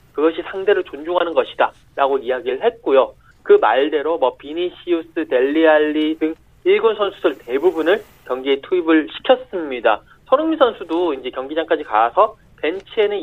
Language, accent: Korean, native